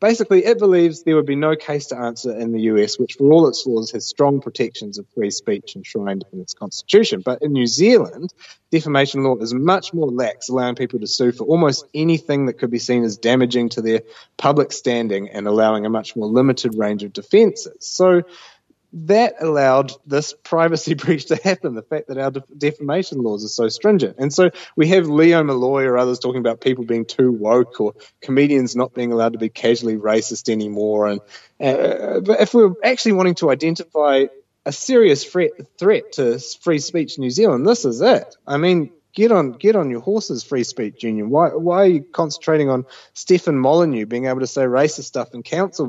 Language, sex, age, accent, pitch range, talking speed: English, male, 30-49, Australian, 120-170 Hz, 200 wpm